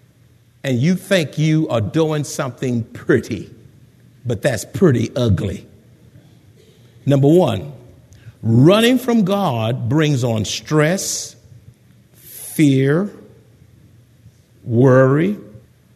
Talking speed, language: 85 wpm, English